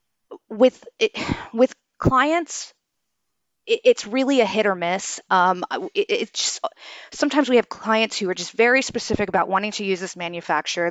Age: 30-49